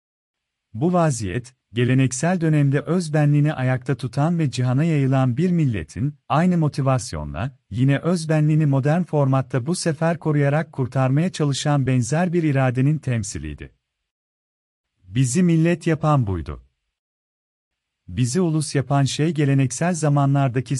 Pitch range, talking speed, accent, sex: 125-150 Hz, 105 wpm, native, male